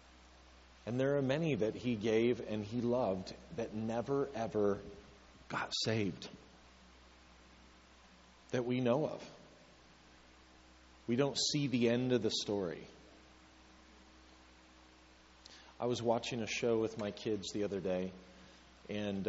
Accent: American